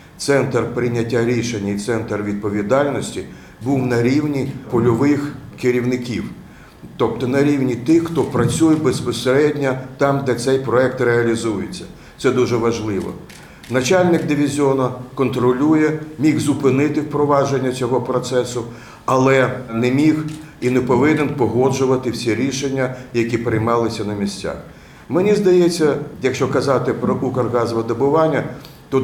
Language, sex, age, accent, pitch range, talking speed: Ukrainian, male, 50-69, native, 115-140 Hz, 115 wpm